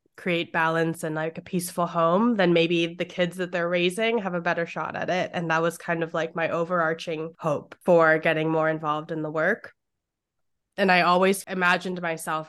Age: 20-39